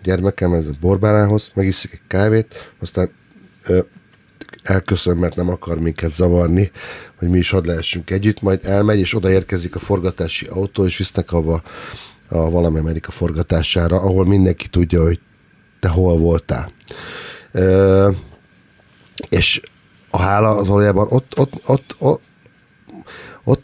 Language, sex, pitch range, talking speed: Hungarian, male, 85-100 Hz, 140 wpm